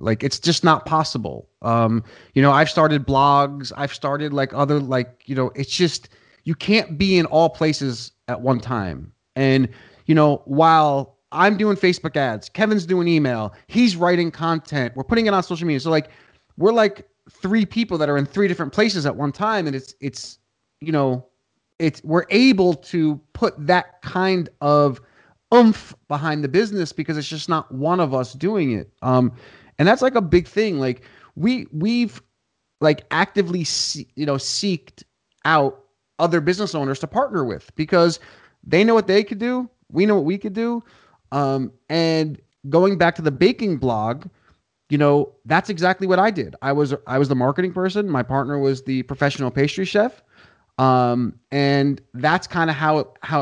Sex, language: male, English